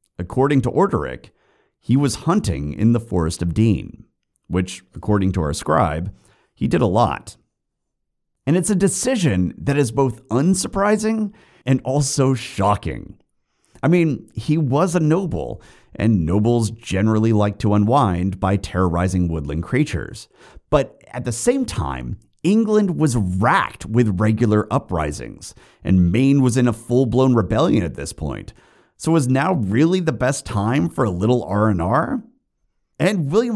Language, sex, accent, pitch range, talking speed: English, male, American, 100-150 Hz, 145 wpm